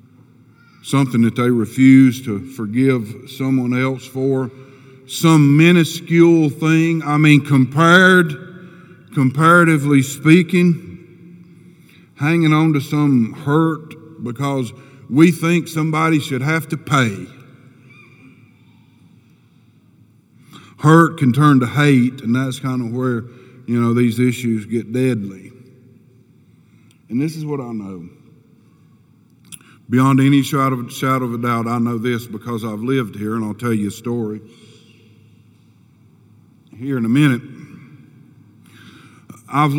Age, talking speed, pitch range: 50-69, 115 wpm, 115-140 Hz